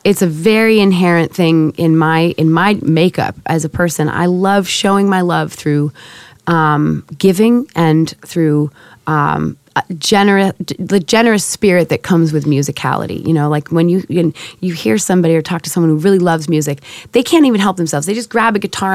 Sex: female